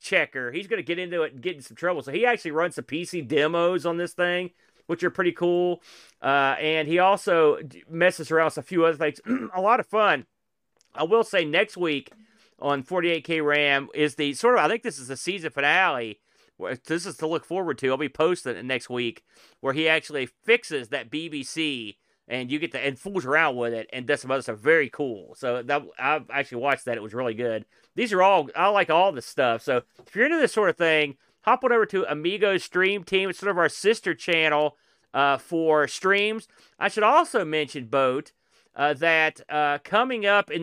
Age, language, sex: 40-59, English, male